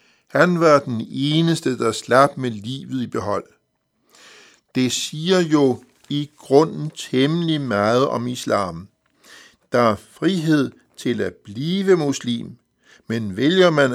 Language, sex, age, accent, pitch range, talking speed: Danish, male, 60-79, native, 115-155 Hz, 125 wpm